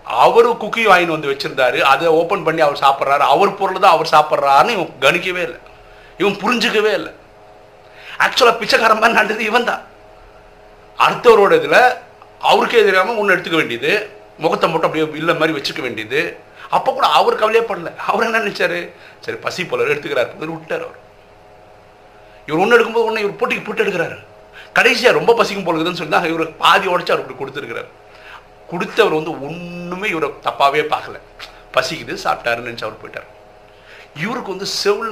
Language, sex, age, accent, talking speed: Tamil, male, 50-69, native, 95 wpm